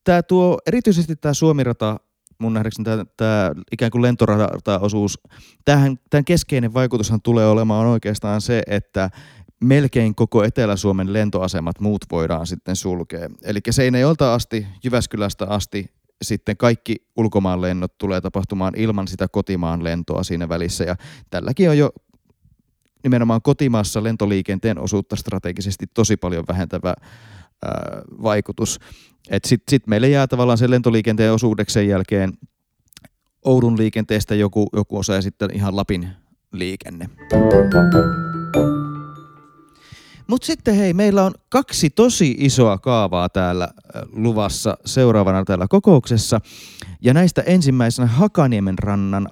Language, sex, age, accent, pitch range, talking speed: Finnish, male, 30-49, native, 95-125 Hz, 115 wpm